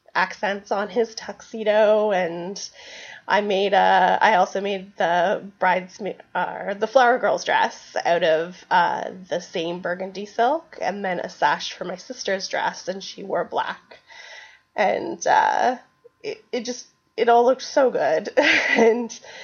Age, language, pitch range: 20-39, English, 190-280 Hz